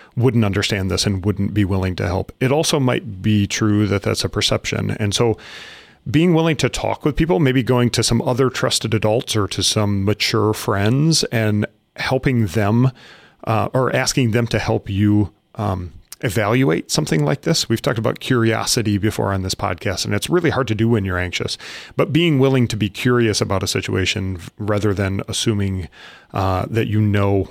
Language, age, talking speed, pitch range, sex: English, 40-59, 190 wpm, 95-120 Hz, male